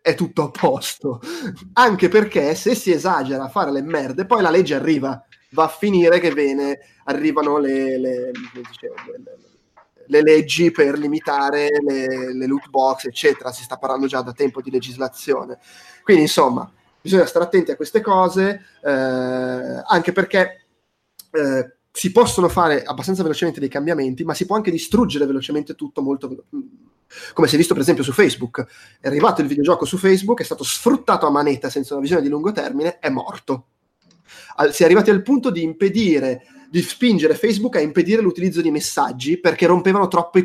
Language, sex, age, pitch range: Italian, male, 20-39, 135-190 Hz